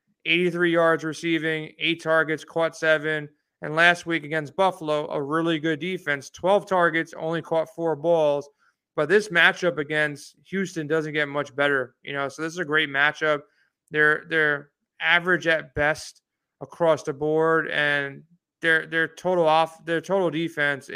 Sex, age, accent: male, 30-49, American